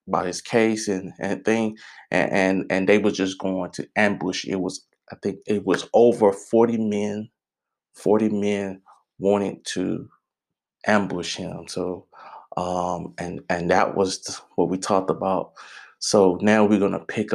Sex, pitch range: male, 95-105 Hz